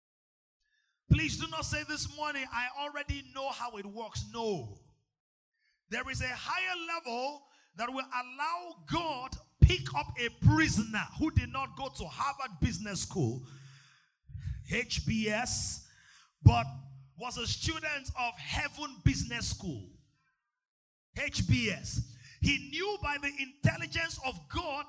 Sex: male